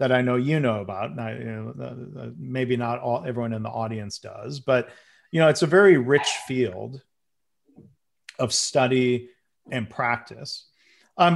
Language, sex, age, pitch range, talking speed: English, male, 40-59, 115-140 Hz, 170 wpm